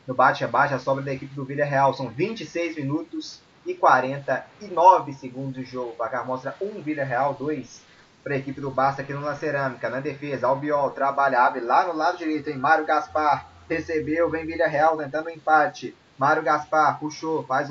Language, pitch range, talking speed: Portuguese, 130-160 Hz, 185 wpm